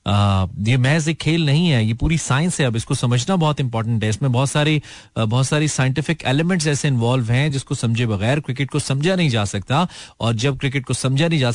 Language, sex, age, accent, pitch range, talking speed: Hindi, male, 40-59, native, 115-150 Hz, 220 wpm